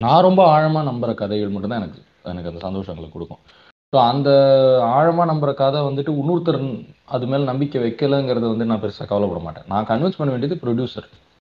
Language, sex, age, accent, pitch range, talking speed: Tamil, male, 20-39, native, 100-150 Hz, 170 wpm